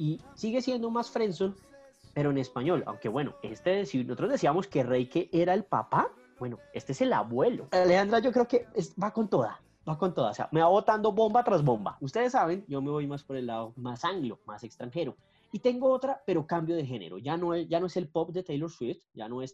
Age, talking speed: 20-39, 240 wpm